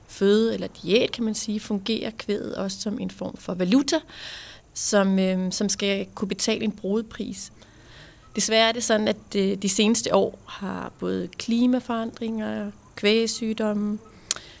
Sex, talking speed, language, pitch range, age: female, 135 wpm, Danish, 185-220 Hz, 30-49